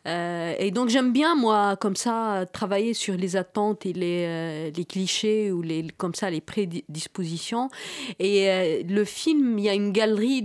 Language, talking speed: French, 185 wpm